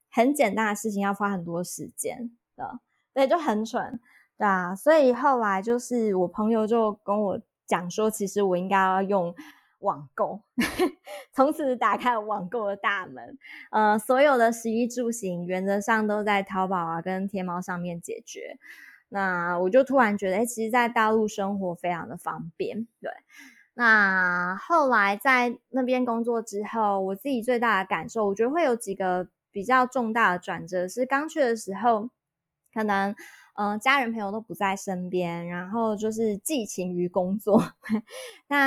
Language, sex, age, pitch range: Chinese, female, 20-39, 190-245 Hz